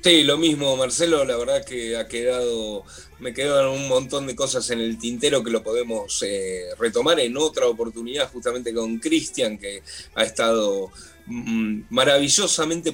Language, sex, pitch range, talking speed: Spanish, male, 120-185 Hz, 160 wpm